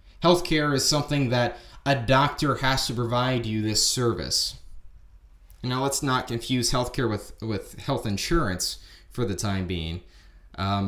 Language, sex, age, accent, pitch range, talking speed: English, male, 20-39, American, 110-155 Hz, 145 wpm